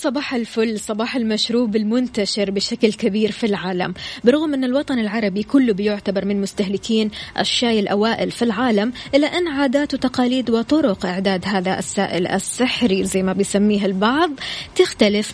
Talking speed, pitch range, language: 135 wpm, 195-250 Hz, Arabic